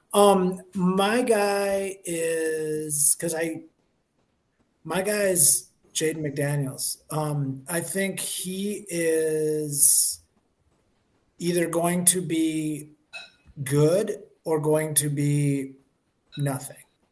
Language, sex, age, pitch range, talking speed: English, male, 30-49, 145-170 Hz, 90 wpm